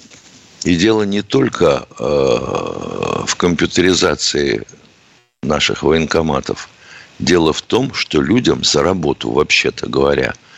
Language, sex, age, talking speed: Russian, male, 60-79, 100 wpm